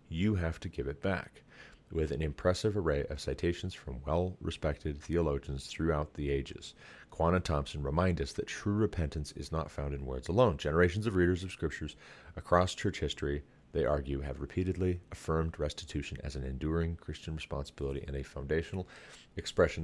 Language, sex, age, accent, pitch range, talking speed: English, male, 30-49, American, 75-95 Hz, 165 wpm